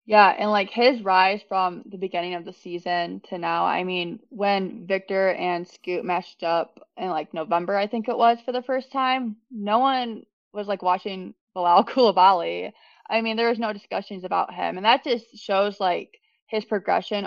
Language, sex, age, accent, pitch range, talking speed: English, female, 20-39, American, 185-235 Hz, 190 wpm